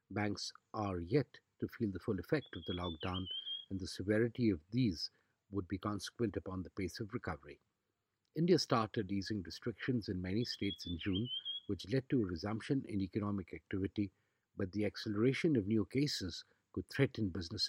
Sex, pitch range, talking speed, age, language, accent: male, 95-115 Hz, 170 wpm, 50-69, English, Indian